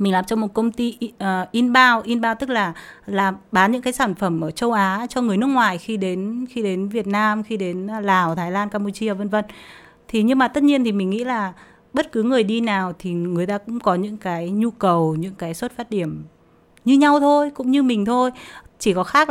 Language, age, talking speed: Vietnamese, 20-39, 235 wpm